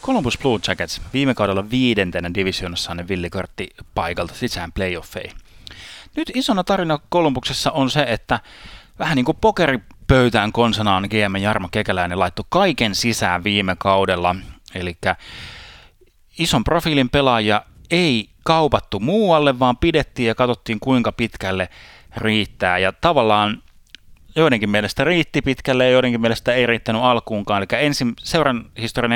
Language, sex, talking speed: Finnish, male, 125 wpm